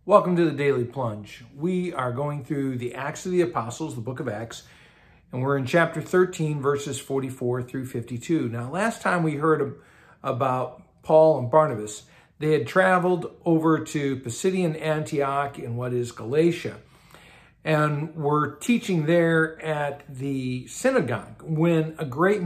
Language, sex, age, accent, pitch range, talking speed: English, male, 50-69, American, 140-180 Hz, 150 wpm